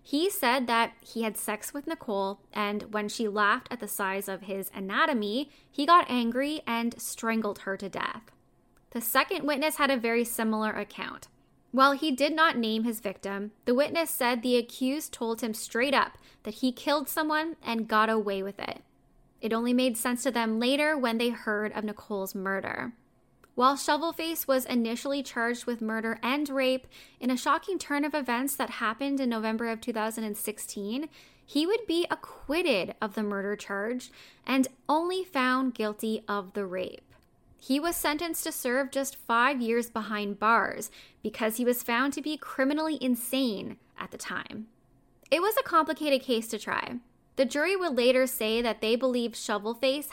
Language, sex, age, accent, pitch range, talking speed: English, female, 10-29, American, 215-280 Hz, 175 wpm